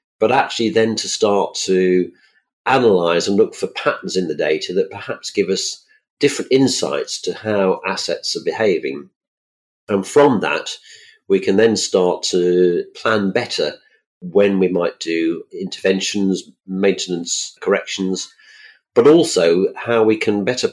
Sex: male